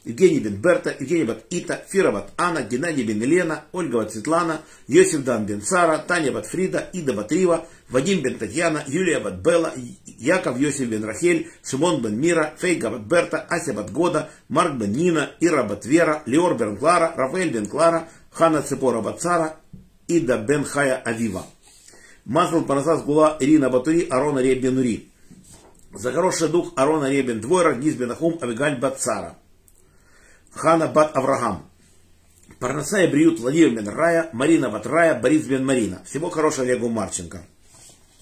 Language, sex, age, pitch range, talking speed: Russian, male, 50-69, 120-170 Hz, 135 wpm